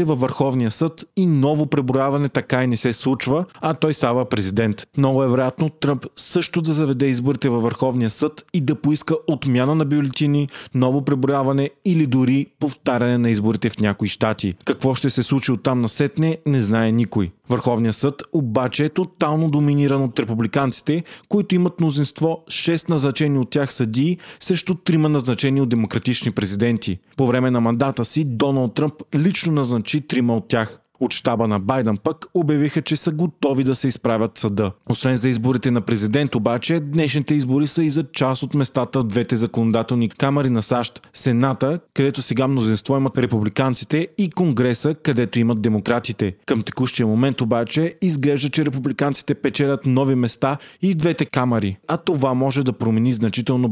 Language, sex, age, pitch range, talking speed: Bulgarian, male, 30-49, 120-150 Hz, 165 wpm